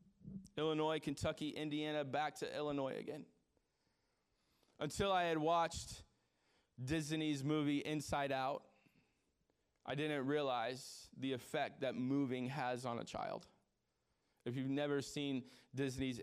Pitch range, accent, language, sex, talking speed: 130-150 Hz, American, English, male, 115 wpm